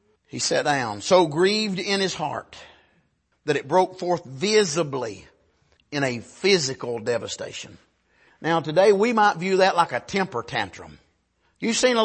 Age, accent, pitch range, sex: 50-69, American, 200-295 Hz, male